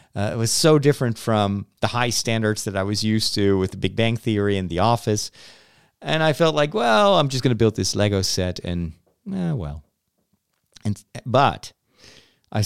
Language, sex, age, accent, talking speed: English, male, 40-59, American, 195 wpm